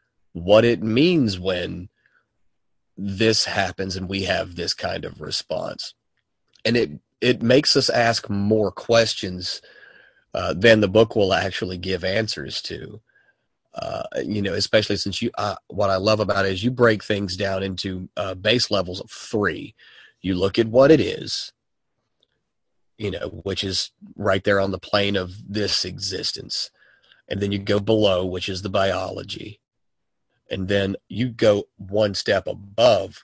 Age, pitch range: 30-49, 95-110 Hz